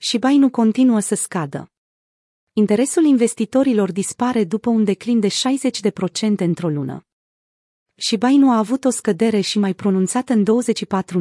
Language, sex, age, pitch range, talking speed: Romanian, female, 30-49, 185-225 Hz, 140 wpm